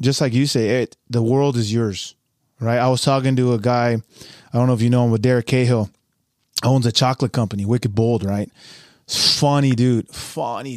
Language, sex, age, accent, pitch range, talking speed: English, male, 20-39, American, 120-145 Hz, 195 wpm